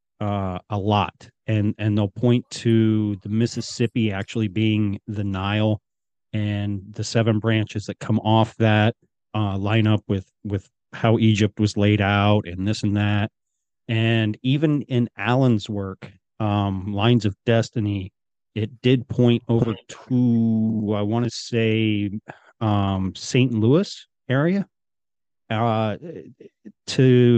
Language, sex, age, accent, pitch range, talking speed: English, male, 40-59, American, 105-120 Hz, 130 wpm